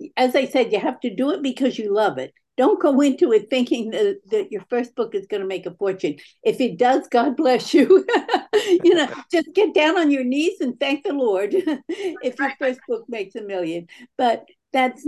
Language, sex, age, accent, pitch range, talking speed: English, female, 60-79, American, 200-310 Hz, 215 wpm